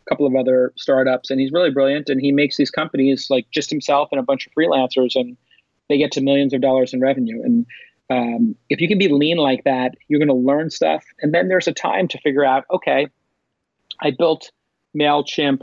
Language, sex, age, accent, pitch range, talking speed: English, male, 30-49, American, 130-150 Hz, 215 wpm